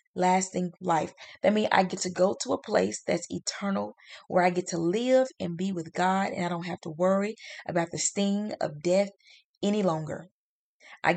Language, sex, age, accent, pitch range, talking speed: English, female, 20-39, American, 175-210 Hz, 195 wpm